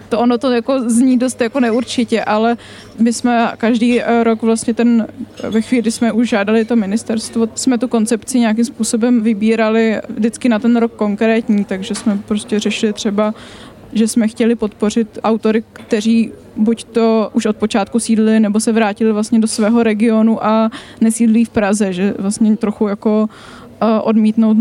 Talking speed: 160 wpm